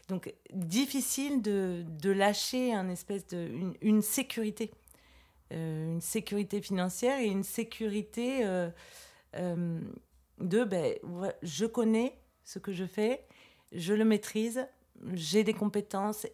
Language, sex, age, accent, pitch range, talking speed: French, female, 40-59, French, 170-220 Hz, 130 wpm